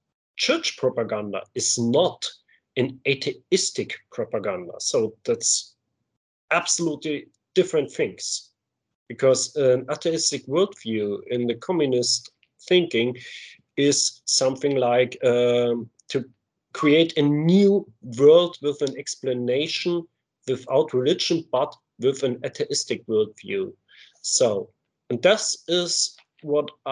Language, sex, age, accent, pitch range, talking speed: Czech, male, 30-49, German, 125-175 Hz, 100 wpm